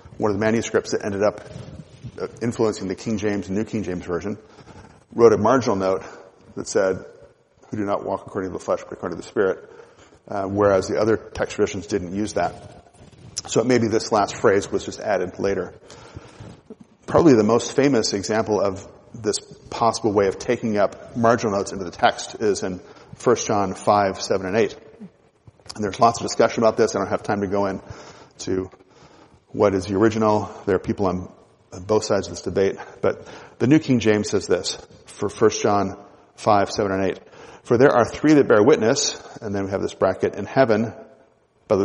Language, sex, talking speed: English, male, 195 wpm